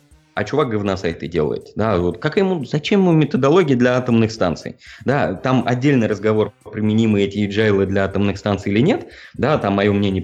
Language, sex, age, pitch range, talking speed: Russian, male, 20-39, 100-125 Hz, 180 wpm